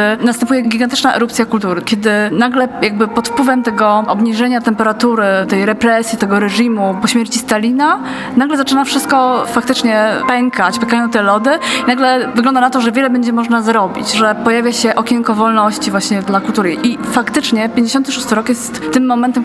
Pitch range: 210-245 Hz